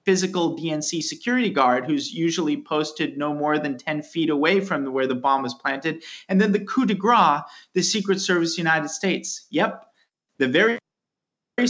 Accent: American